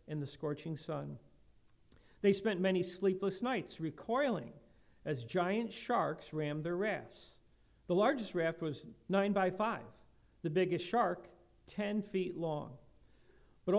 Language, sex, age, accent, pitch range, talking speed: English, male, 50-69, American, 150-205 Hz, 130 wpm